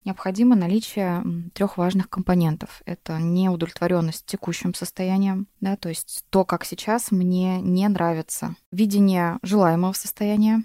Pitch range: 175-215 Hz